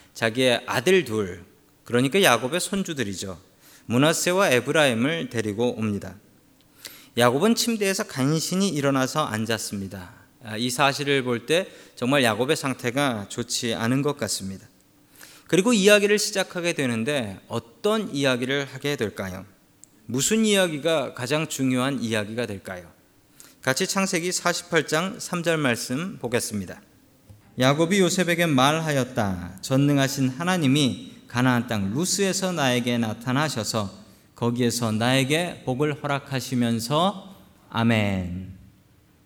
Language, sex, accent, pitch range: Korean, male, native, 115-175 Hz